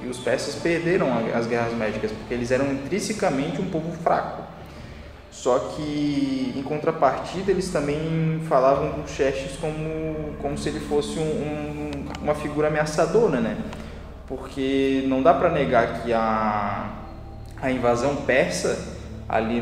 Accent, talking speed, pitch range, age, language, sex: Brazilian, 140 wpm, 115-145 Hz, 20-39, Portuguese, male